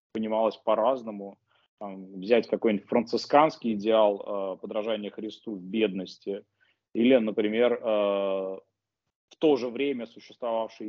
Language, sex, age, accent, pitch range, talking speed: Russian, male, 20-39, native, 100-120 Hz, 105 wpm